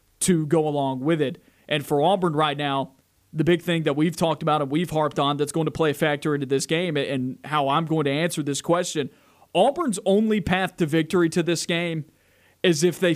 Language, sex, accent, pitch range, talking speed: English, male, American, 145-180 Hz, 225 wpm